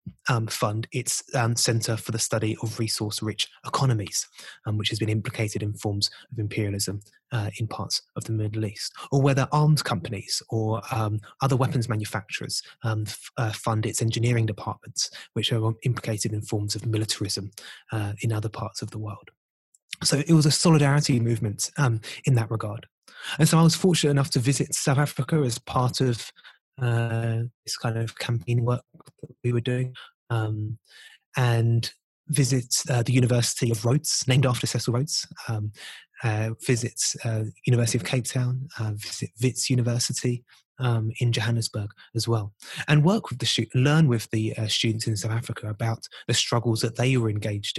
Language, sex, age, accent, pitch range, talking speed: English, male, 20-39, British, 110-130 Hz, 175 wpm